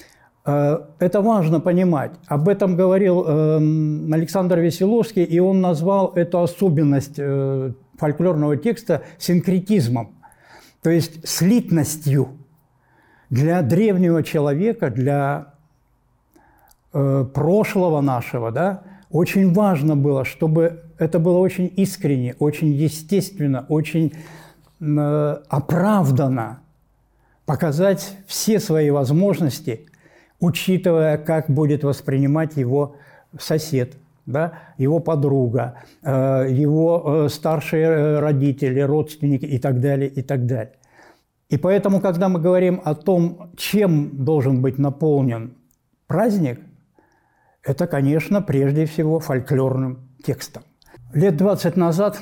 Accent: native